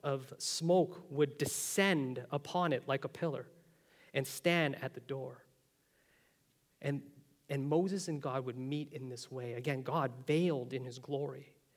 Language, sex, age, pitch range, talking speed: English, male, 30-49, 135-170 Hz, 155 wpm